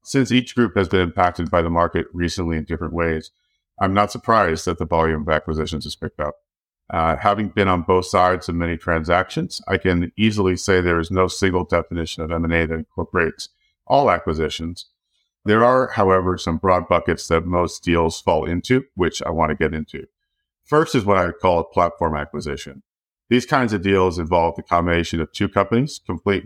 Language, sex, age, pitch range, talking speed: English, male, 50-69, 80-100 Hz, 195 wpm